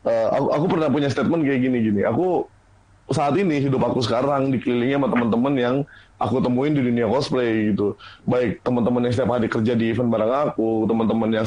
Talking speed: 190 wpm